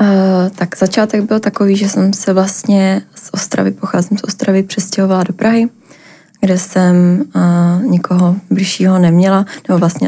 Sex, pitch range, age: female, 175-195 Hz, 20-39